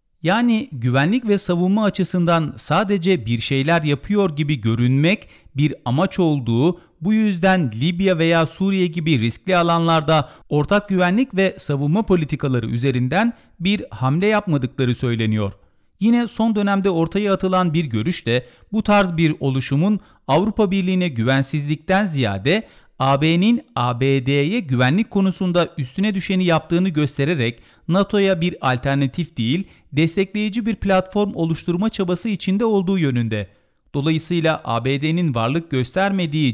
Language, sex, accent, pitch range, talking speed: Turkish, male, native, 140-195 Hz, 120 wpm